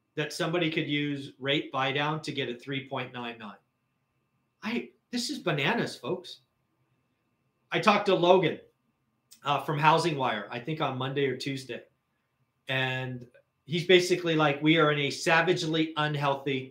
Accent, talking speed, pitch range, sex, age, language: American, 135 wpm, 130-165 Hz, male, 40-59, English